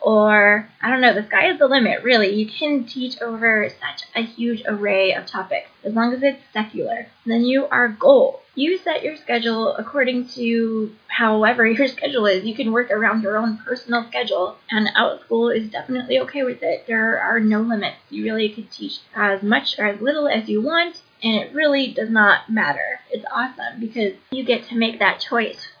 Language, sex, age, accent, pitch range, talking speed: English, female, 20-39, American, 220-275 Hz, 200 wpm